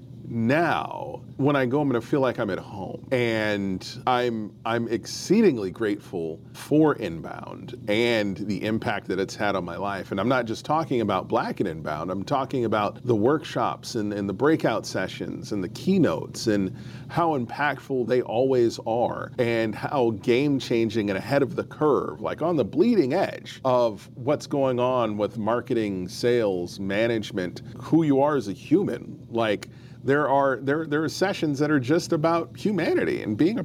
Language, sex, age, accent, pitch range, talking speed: English, male, 40-59, American, 110-135 Hz, 175 wpm